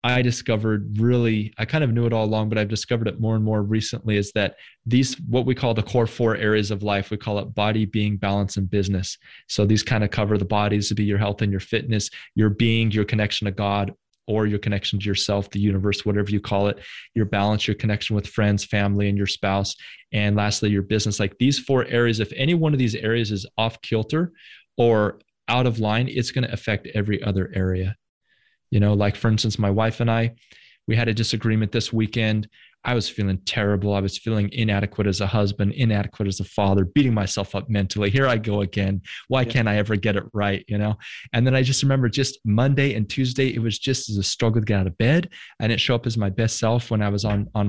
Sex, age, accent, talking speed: male, 20-39, American, 235 wpm